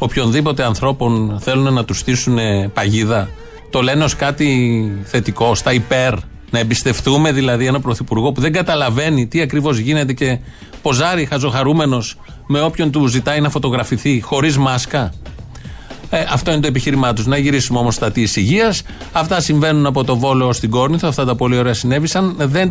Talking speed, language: 160 wpm, Greek